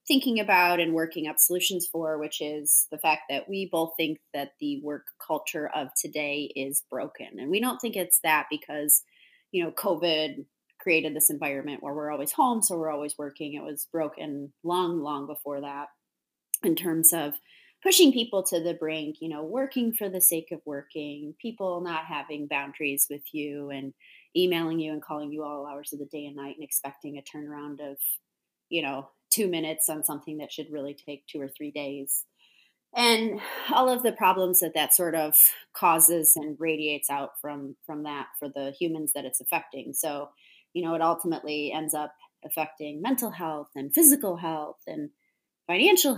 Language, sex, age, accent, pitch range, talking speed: English, female, 30-49, American, 145-180 Hz, 185 wpm